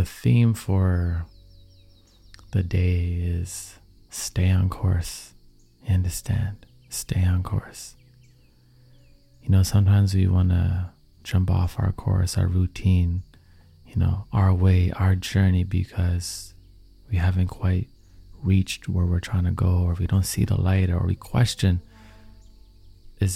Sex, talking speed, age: male, 130 wpm, 30-49